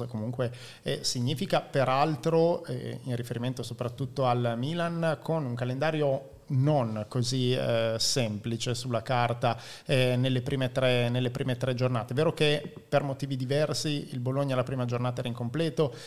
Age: 30-49